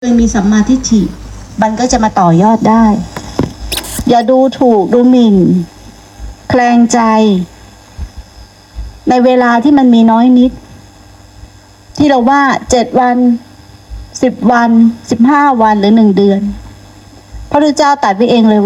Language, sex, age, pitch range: Thai, female, 60-79, 165-245 Hz